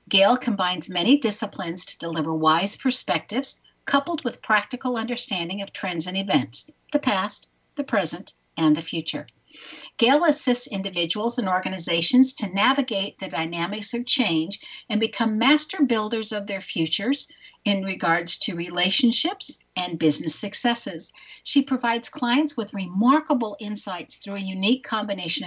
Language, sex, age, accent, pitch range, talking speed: English, female, 60-79, American, 170-250 Hz, 135 wpm